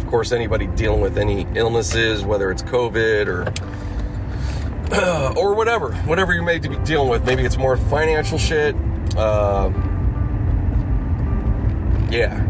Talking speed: 130 wpm